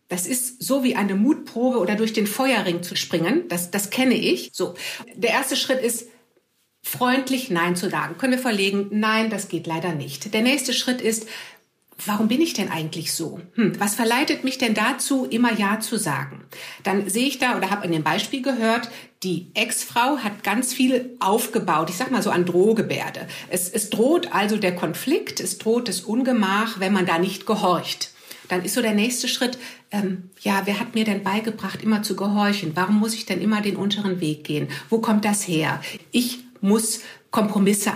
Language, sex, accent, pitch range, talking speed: German, female, German, 190-250 Hz, 195 wpm